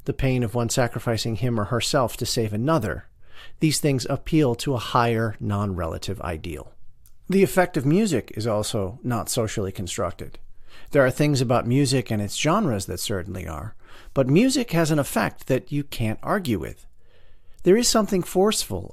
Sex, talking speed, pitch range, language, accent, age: male, 170 wpm, 105-145 Hz, English, American, 40-59